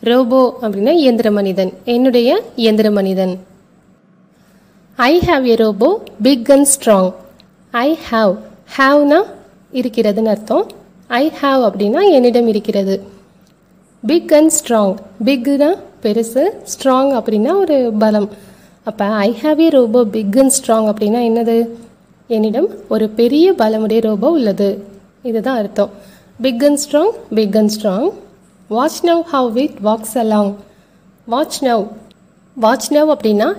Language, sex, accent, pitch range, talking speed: Tamil, female, native, 200-260 Hz, 105 wpm